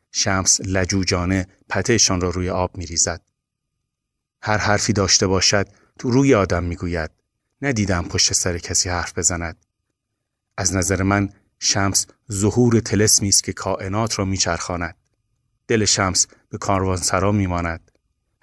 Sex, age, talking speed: male, 30-49, 130 wpm